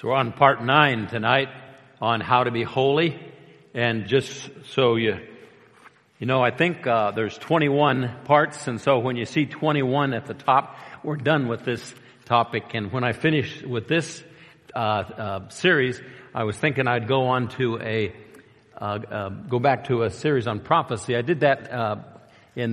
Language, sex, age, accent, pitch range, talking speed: English, male, 50-69, American, 115-135 Hz, 180 wpm